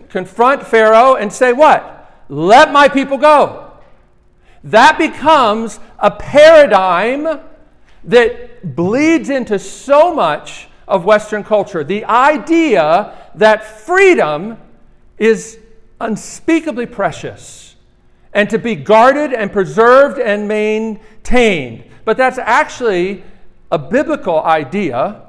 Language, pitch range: English, 180-255 Hz